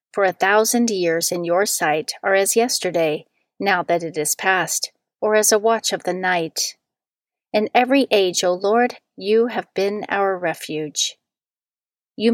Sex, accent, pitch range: female, American, 180-230 Hz